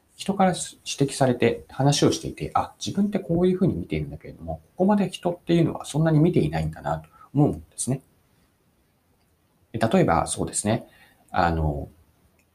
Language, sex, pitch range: Japanese, male, 85-140 Hz